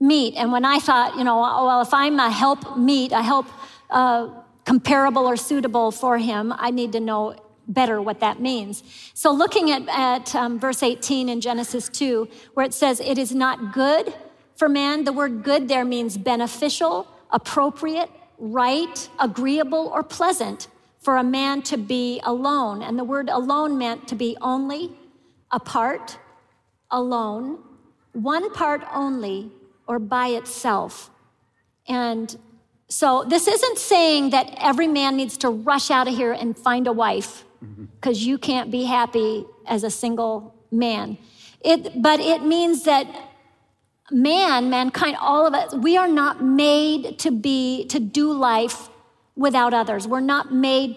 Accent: American